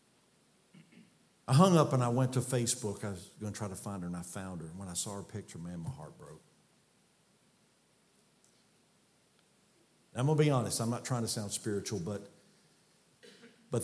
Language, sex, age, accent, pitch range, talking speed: English, male, 50-69, American, 100-125 Hz, 185 wpm